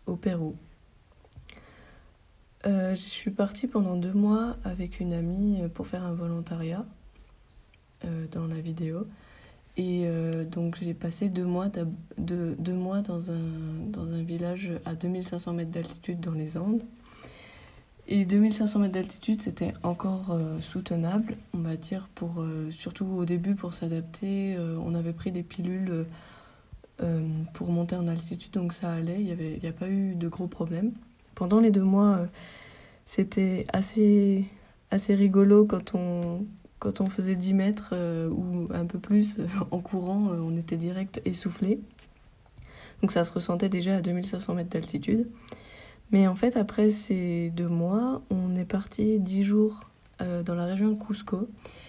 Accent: French